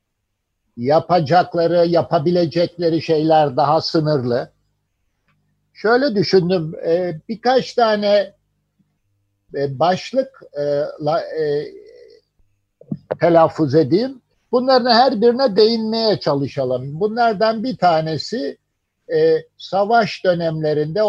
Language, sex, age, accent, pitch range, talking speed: Turkish, male, 50-69, native, 145-200 Hz, 65 wpm